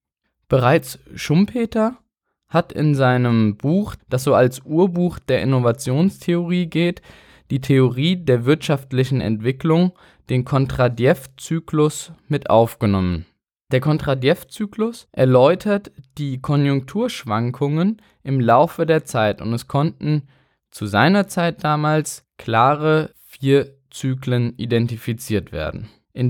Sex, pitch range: male, 125-175 Hz